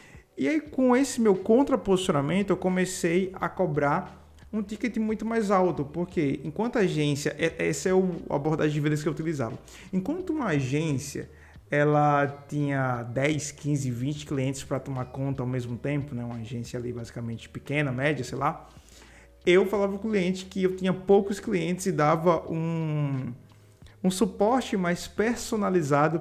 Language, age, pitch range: Portuguese, 20-39, 140-195 Hz